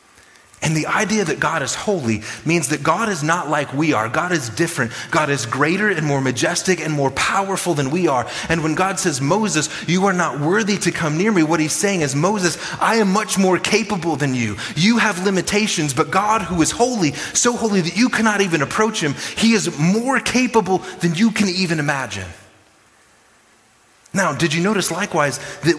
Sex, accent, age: male, American, 30-49